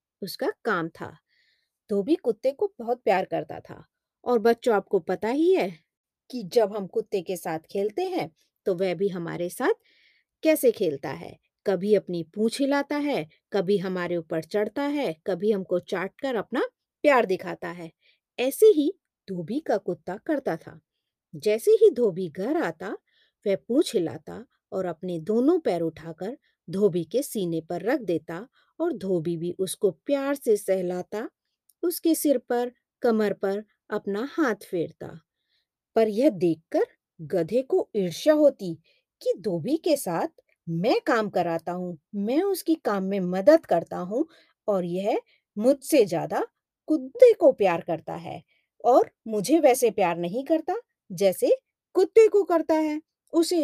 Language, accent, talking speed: Hindi, native, 110 wpm